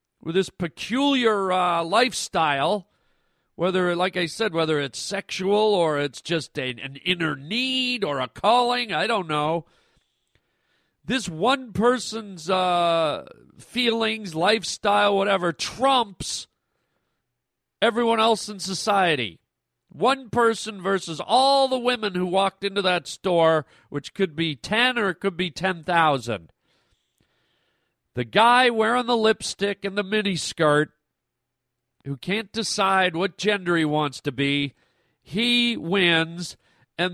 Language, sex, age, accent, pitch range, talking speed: English, male, 40-59, American, 150-210 Hz, 125 wpm